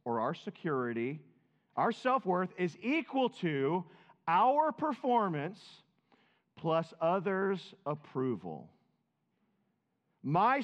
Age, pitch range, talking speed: 40-59, 150-205 Hz, 75 wpm